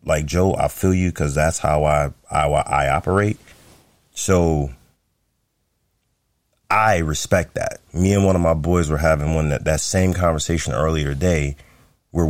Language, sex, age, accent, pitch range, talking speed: English, male, 30-49, American, 75-90 Hz, 155 wpm